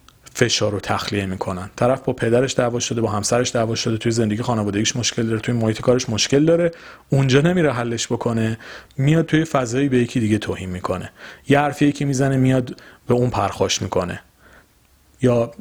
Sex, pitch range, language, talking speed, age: male, 110-140 Hz, Persian, 175 wpm, 30-49